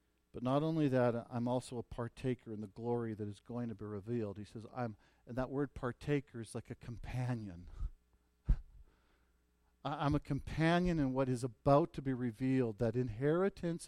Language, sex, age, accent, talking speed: English, male, 50-69, American, 175 wpm